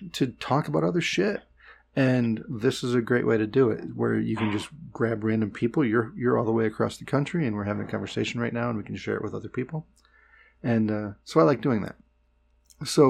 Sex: male